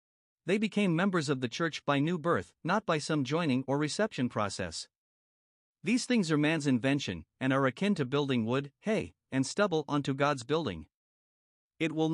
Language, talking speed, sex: English, 175 wpm, male